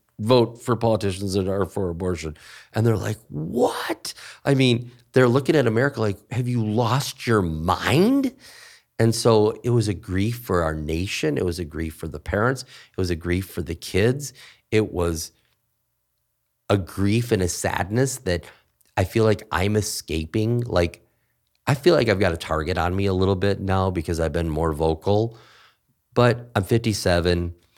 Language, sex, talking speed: English, male, 175 wpm